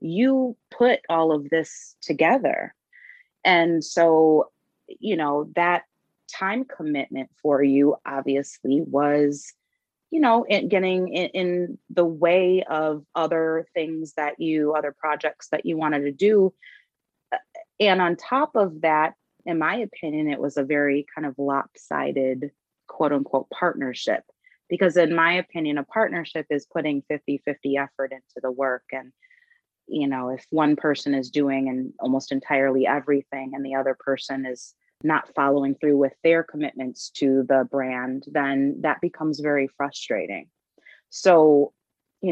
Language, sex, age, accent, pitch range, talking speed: English, female, 30-49, American, 140-170 Hz, 140 wpm